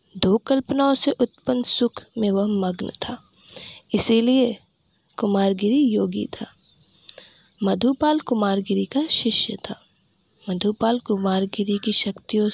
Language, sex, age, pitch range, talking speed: Hindi, female, 20-39, 195-245 Hz, 105 wpm